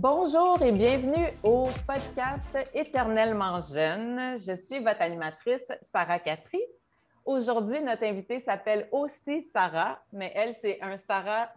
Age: 30-49